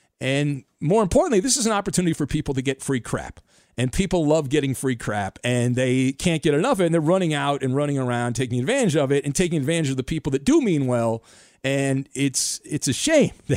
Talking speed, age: 230 wpm, 40-59